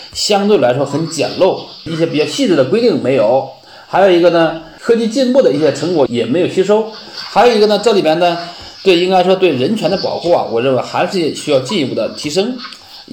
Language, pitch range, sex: Chinese, 155-215 Hz, male